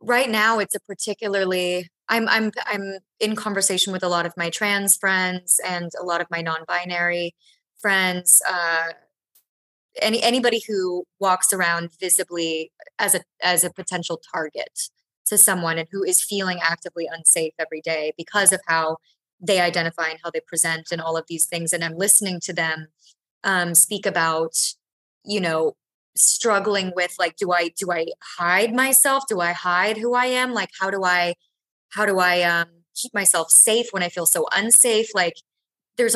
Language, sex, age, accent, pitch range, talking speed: English, female, 20-39, American, 170-205 Hz, 175 wpm